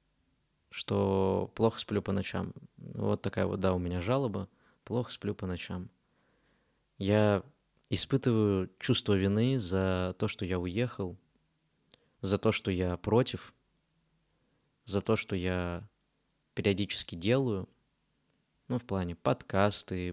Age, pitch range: 20-39, 95-115 Hz